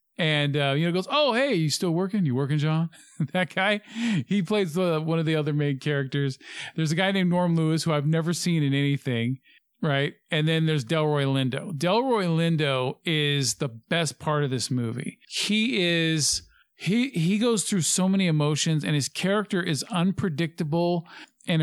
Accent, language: American, English